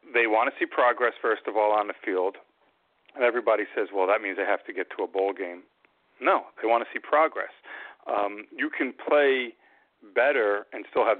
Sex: male